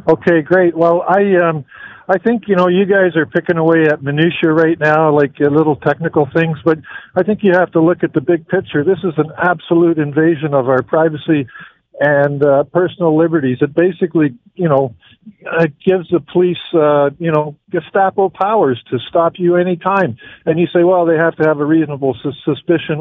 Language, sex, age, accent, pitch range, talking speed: English, male, 50-69, American, 145-175 Hz, 200 wpm